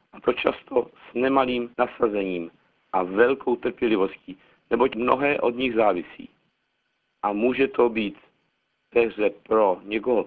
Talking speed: 125 wpm